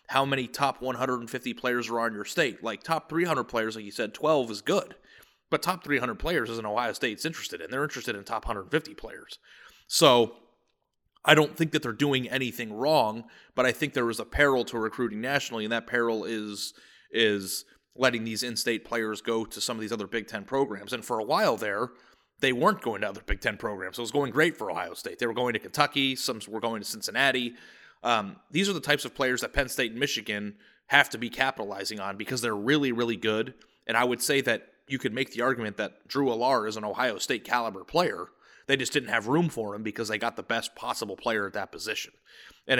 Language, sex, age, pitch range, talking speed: English, male, 30-49, 110-135 Hz, 225 wpm